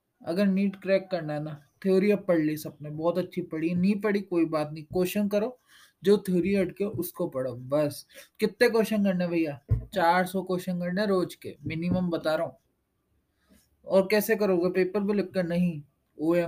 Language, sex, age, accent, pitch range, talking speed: Hindi, male, 20-39, native, 165-205 Hz, 180 wpm